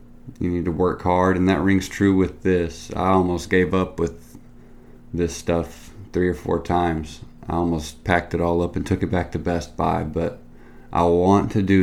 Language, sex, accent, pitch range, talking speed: English, male, American, 85-100 Hz, 205 wpm